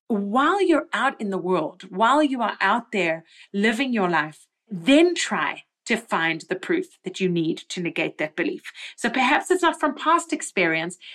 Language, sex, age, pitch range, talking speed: English, female, 30-49, 185-260 Hz, 185 wpm